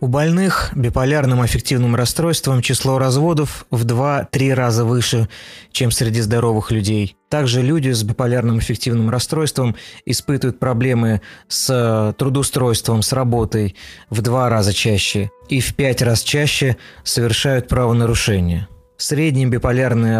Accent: native